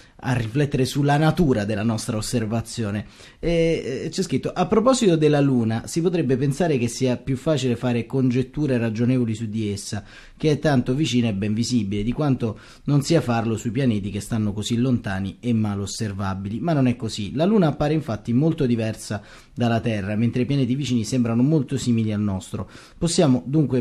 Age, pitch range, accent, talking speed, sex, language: 30-49, 110-135 Hz, native, 180 wpm, male, Italian